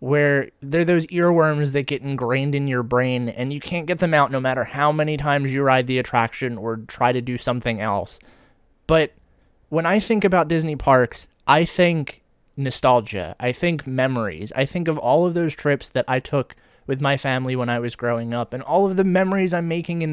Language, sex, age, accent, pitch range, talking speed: English, male, 20-39, American, 125-165 Hz, 210 wpm